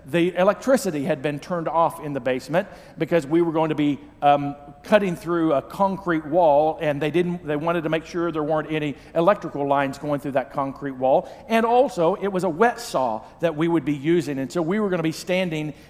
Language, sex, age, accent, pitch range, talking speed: English, male, 50-69, American, 145-185 Hz, 220 wpm